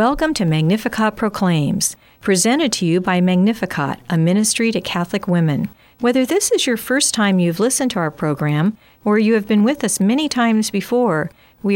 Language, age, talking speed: English, 50-69, 180 wpm